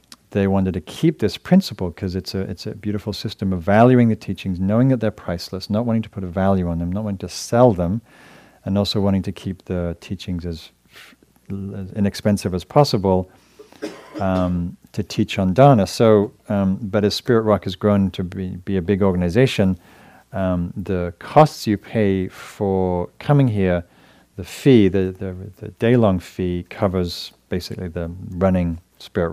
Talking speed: 175 wpm